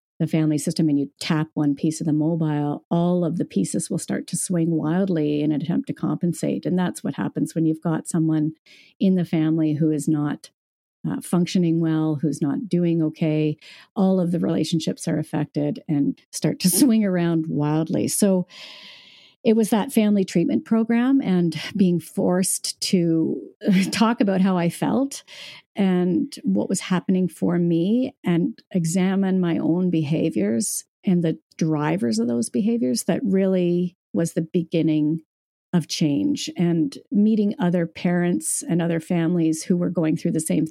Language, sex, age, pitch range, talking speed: English, female, 50-69, 160-190 Hz, 160 wpm